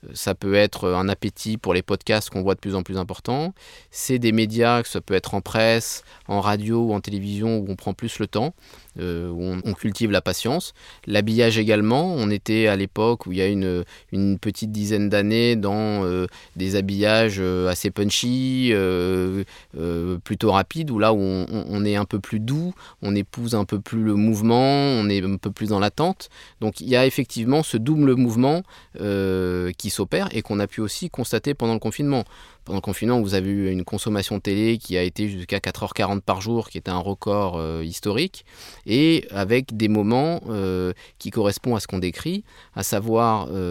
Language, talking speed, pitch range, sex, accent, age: French, 200 wpm, 95-115 Hz, male, French, 20-39